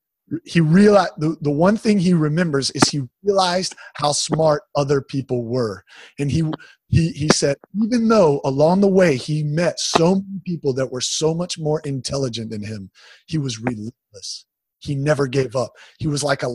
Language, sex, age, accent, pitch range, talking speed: English, male, 30-49, American, 130-170 Hz, 180 wpm